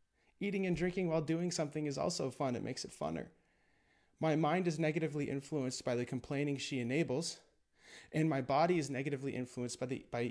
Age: 30-49